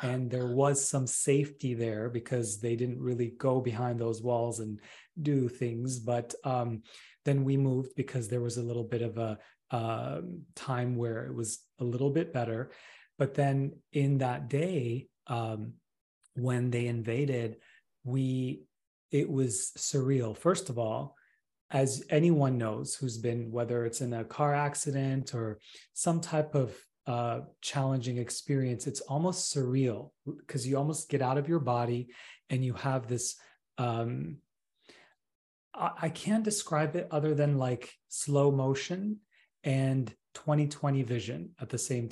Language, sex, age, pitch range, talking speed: English, male, 30-49, 120-145 Hz, 150 wpm